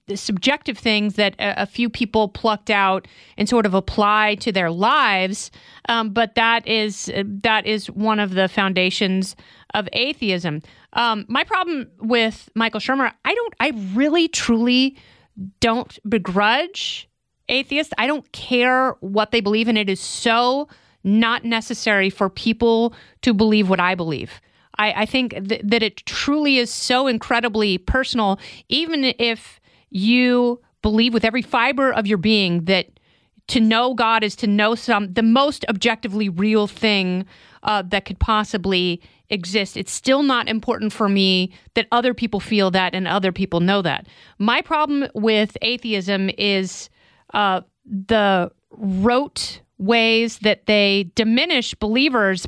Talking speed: 145 wpm